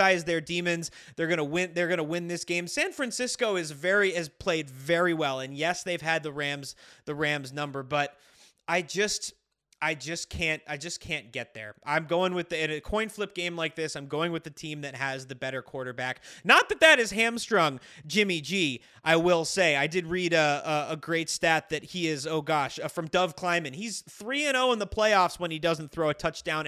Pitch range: 160-260 Hz